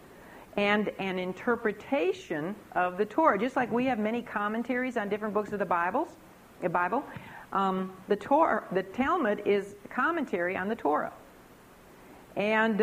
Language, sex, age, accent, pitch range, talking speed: English, female, 60-79, American, 175-250 Hz, 145 wpm